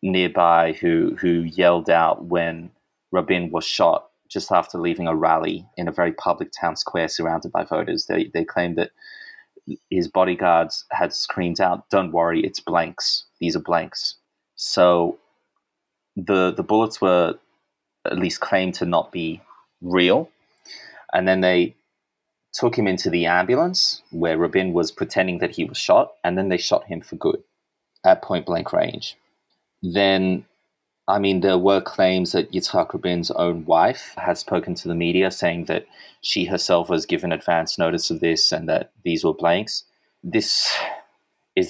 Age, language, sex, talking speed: 30-49, English, male, 160 wpm